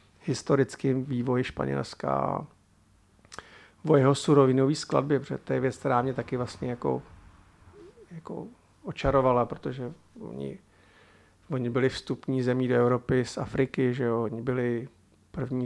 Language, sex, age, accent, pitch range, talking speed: Czech, male, 50-69, native, 115-135 Hz, 120 wpm